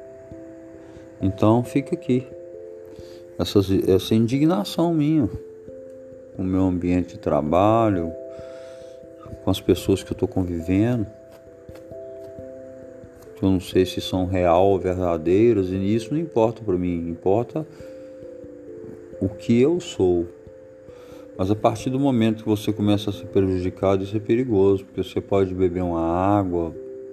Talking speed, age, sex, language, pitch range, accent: 130 wpm, 40-59, male, Portuguese, 85-105 Hz, Brazilian